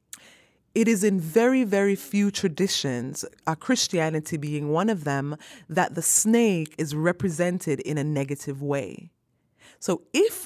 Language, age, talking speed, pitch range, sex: English, 20-39, 130 wpm, 150-210 Hz, female